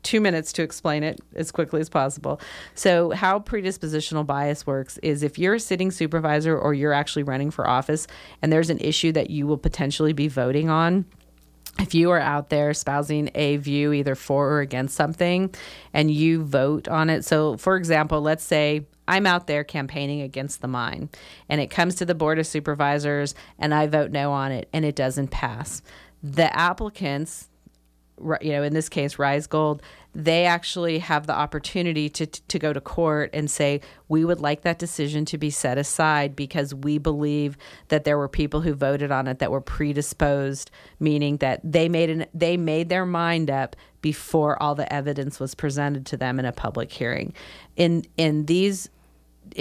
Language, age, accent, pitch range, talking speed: English, 40-59, American, 145-165 Hz, 185 wpm